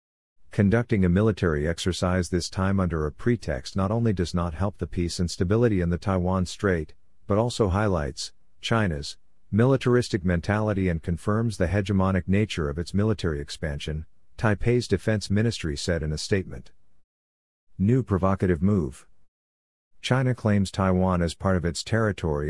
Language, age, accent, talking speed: English, 50-69, American, 145 wpm